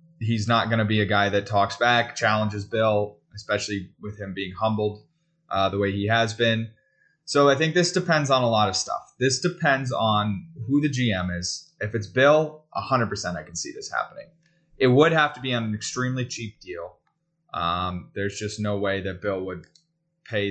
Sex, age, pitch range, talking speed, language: male, 20-39, 100-135 Hz, 200 wpm, English